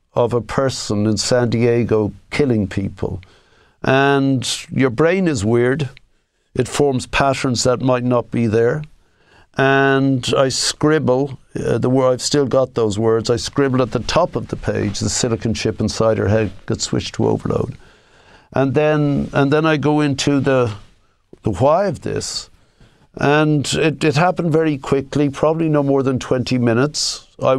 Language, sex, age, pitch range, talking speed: English, male, 60-79, 115-135 Hz, 165 wpm